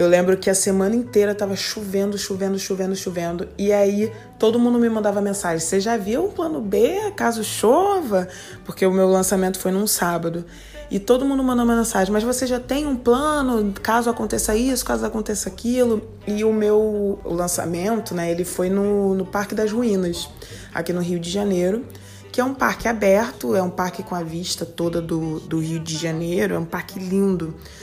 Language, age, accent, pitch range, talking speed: Portuguese, 20-39, Brazilian, 180-215 Hz, 190 wpm